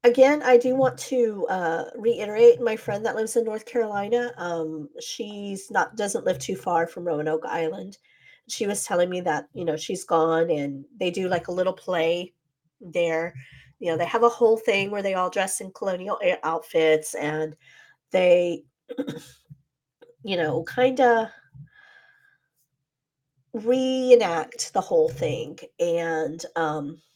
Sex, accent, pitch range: female, American, 160-250 Hz